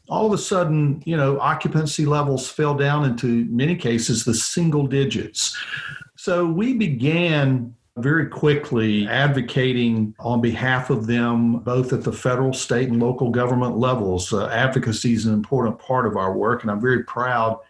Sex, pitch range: male, 115-140 Hz